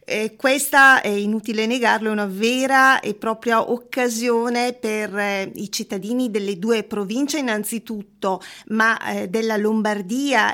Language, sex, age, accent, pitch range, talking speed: Italian, female, 30-49, native, 210-255 Hz, 130 wpm